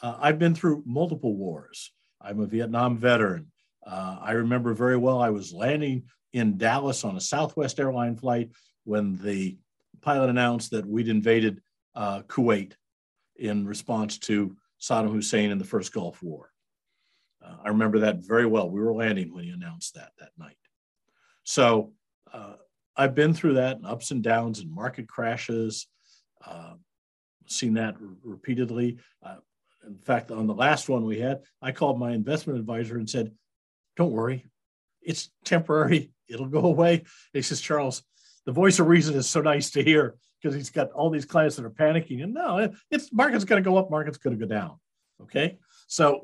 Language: English